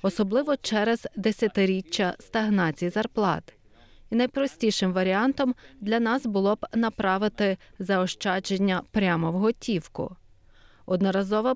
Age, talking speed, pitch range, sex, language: 30-49, 95 wpm, 185-235 Hz, female, Ukrainian